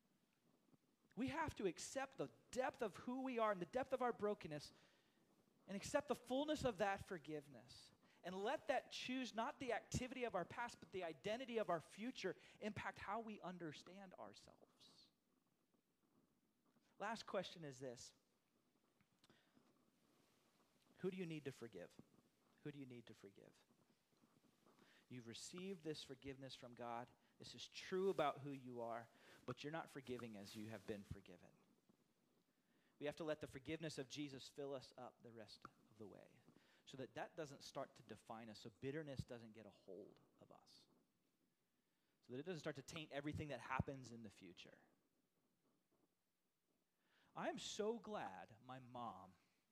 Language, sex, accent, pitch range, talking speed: English, male, American, 125-195 Hz, 160 wpm